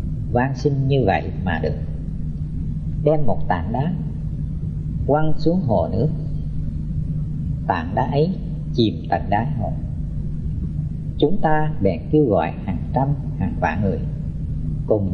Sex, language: female, Vietnamese